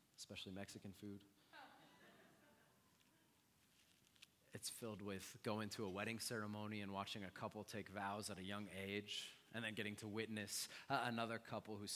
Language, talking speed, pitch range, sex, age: English, 150 wpm, 105-140 Hz, male, 30-49